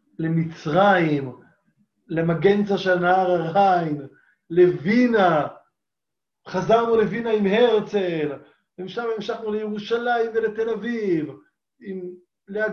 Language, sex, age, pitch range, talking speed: Hebrew, male, 30-49, 145-185 Hz, 80 wpm